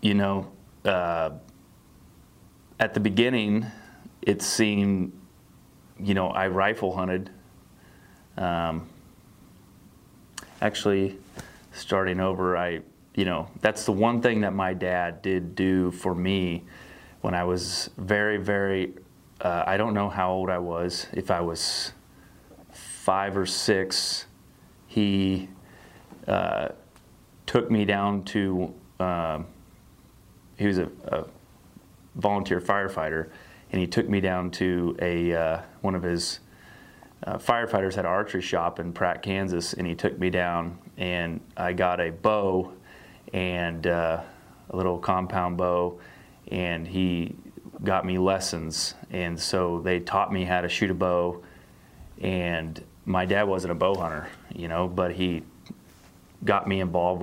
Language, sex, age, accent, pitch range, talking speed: English, male, 30-49, American, 85-95 Hz, 135 wpm